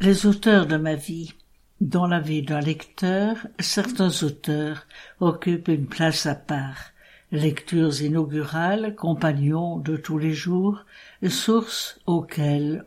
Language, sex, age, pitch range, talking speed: English, female, 60-79, 150-185 Hz, 120 wpm